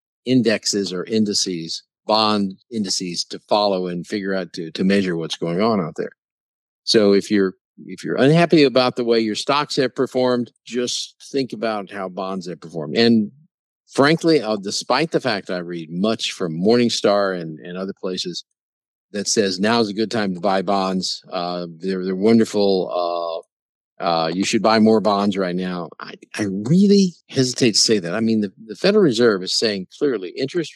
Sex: male